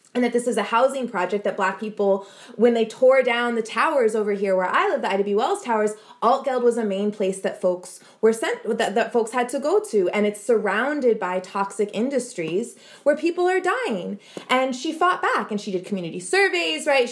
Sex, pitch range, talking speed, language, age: female, 195-265 Hz, 215 wpm, English, 20-39